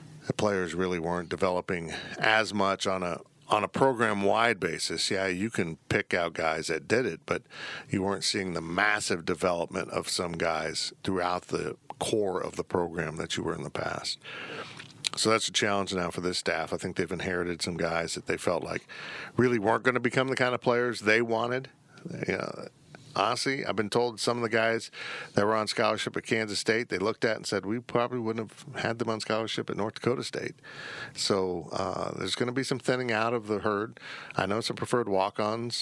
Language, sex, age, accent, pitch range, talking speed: English, male, 50-69, American, 95-115 Hz, 210 wpm